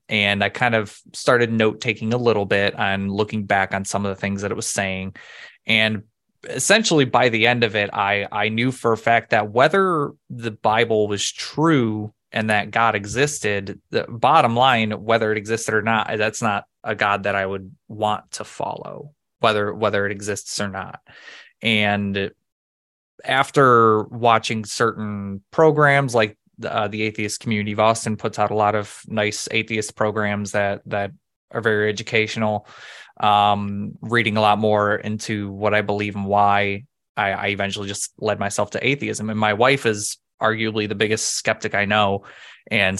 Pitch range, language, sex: 100-115 Hz, English, male